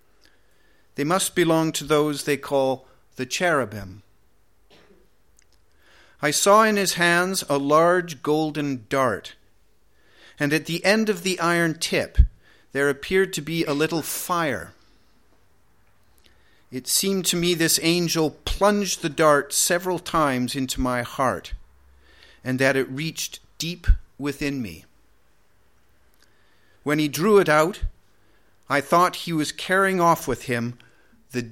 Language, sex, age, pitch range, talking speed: English, male, 50-69, 100-150 Hz, 130 wpm